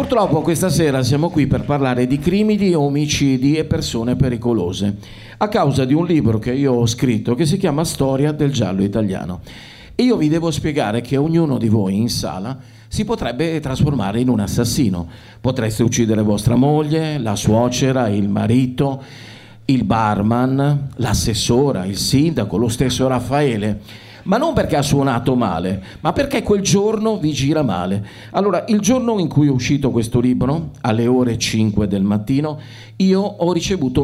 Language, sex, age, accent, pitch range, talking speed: Italian, male, 50-69, native, 110-155 Hz, 160 wpm